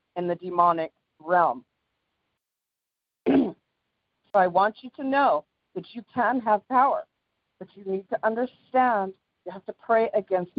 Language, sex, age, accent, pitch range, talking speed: English, female, 50-69, American, 170-210 Hz, 140 wpm